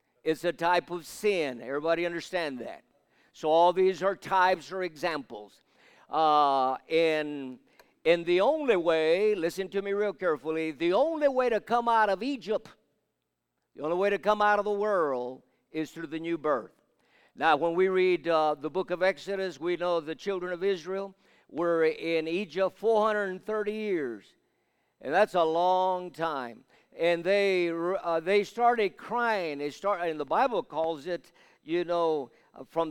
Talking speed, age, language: 160 wpm, 50-69, English